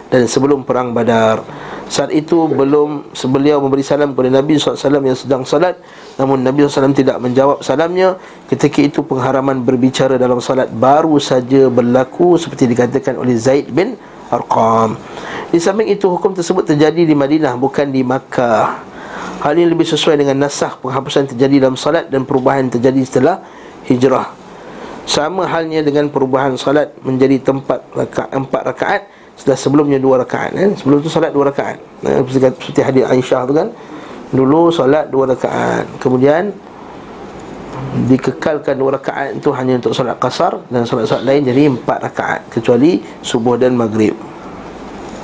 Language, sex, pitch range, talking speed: Malay, male, 130-150 Hz, 145 wpm